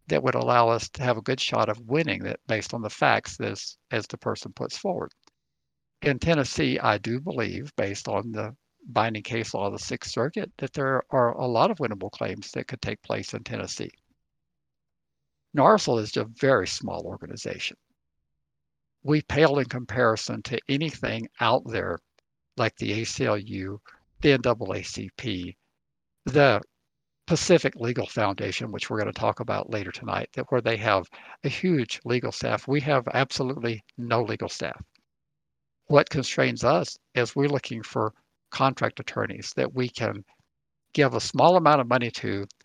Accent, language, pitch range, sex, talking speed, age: American, English, 110-135 Hz, male, 165 wpm, 60-79